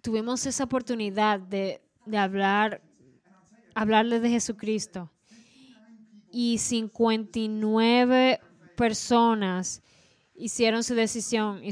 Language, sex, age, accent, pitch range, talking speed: Spanish, female, 20-39, American, 195-230 Hz, 80 wpm